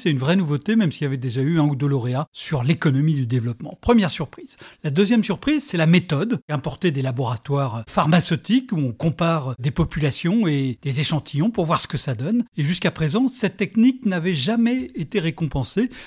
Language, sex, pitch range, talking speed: French, male, 150-205 Hz, 200 wpm